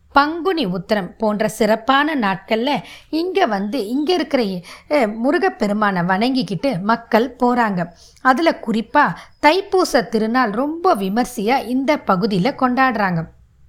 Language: Tamil